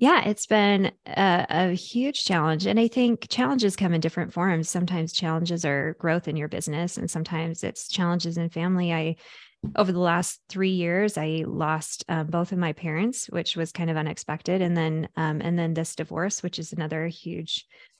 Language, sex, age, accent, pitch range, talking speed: English, female, 20-39, American, 170-205 Hz, 190 wpm